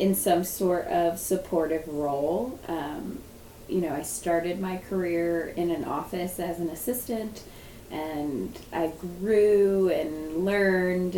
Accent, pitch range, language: American, 170-195 Hz, English